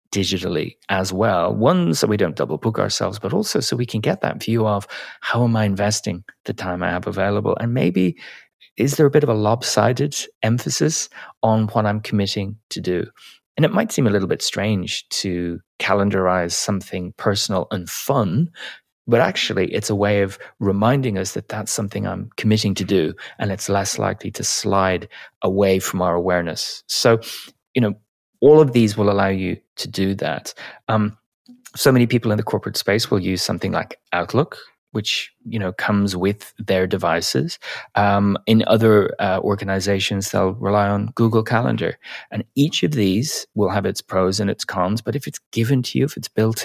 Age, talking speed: 30-49, 185 wpm